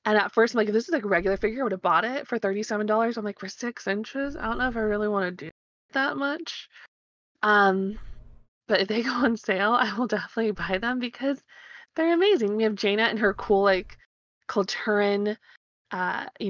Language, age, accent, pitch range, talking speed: English, 20-39, American, 190-220 Hz, 220 wpm